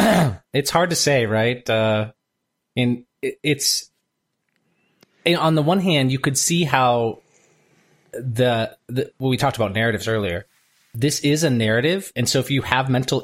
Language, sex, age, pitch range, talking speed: English, male, 20-39, 110-145 Hz, 155 wpm